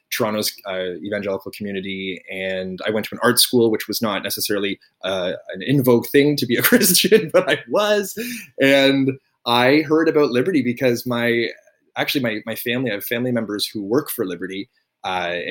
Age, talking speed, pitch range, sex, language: 20-39, 180 wpm, 105-135 Hz, male, English